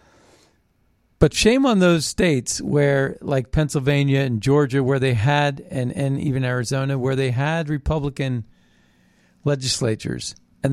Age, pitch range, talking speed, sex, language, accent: 50-69, 120-155 Hz, 130 wpm, male, English, American